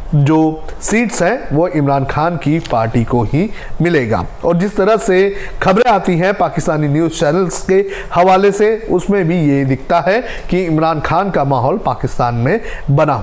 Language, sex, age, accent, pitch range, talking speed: Hindi, male, 40-59, native, 145-200 Hz, 170 wpm